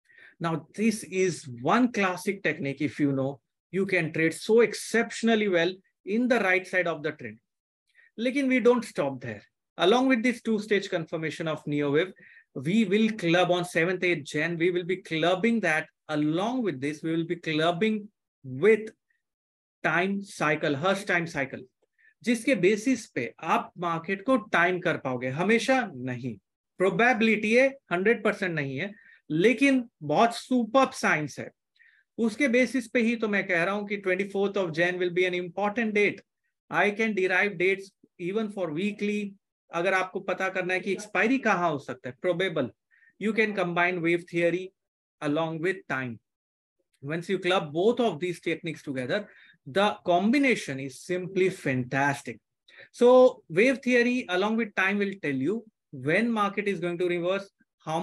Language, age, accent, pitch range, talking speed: English, 30-49, Indian, 165-220 Hz, 150 wpm